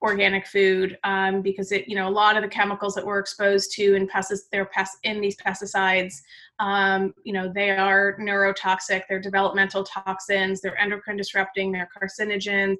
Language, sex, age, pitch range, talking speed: English, female, 30-49, 190-215 Hz, 175 wpm